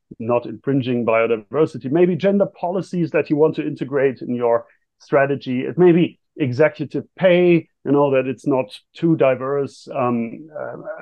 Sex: male